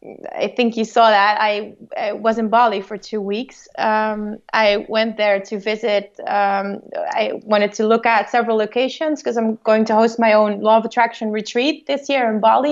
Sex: female